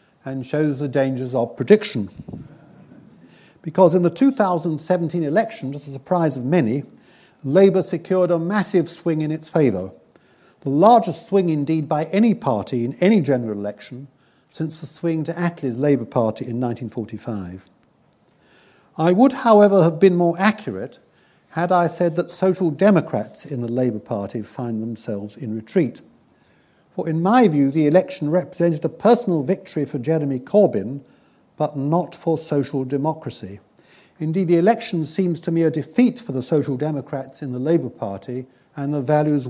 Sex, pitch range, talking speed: male, 130-175 Hz, 155 wpm